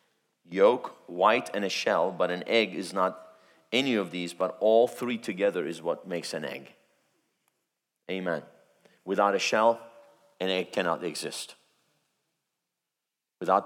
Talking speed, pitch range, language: 135 wpm, 90-110 Hz, English